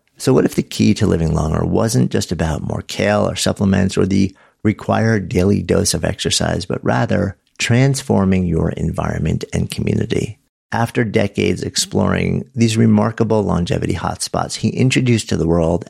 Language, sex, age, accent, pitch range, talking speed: English, male, 50-69, American, 90-115 Hz, 155 wpm